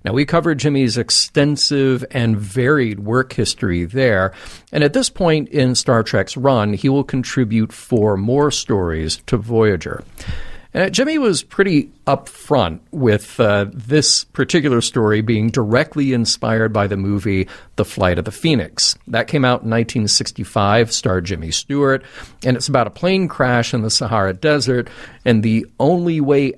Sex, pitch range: male, 105-140 Hz